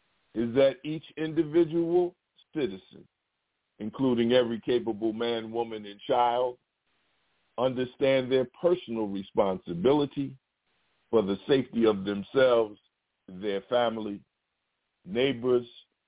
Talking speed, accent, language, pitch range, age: 90 wpm, American, English, 110-145 Hz, 50-69